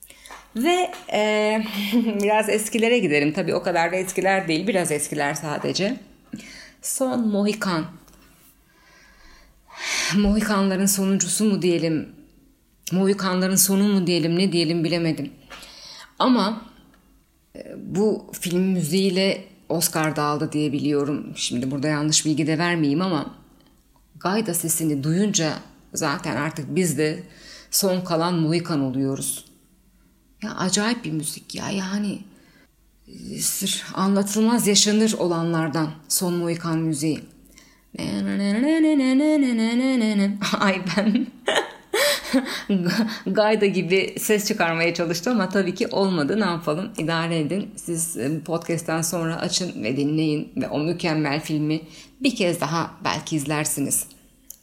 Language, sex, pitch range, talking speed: Turkish, female, 160-215 Hz, 105 wpm